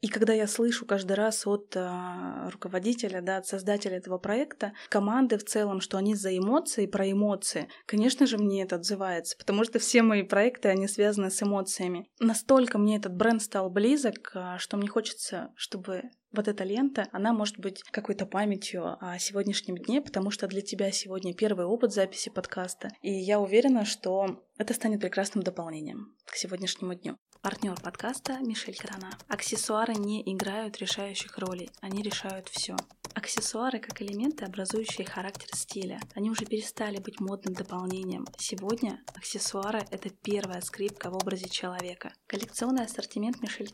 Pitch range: 190-220 Hz